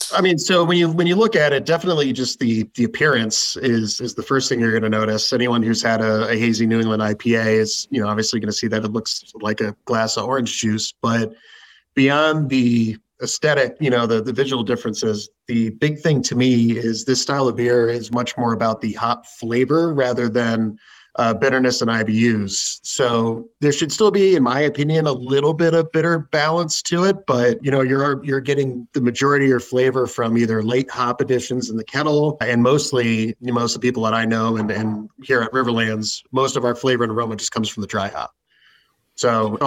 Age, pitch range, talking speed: 30-49, 115-135 Hz, 220 wpm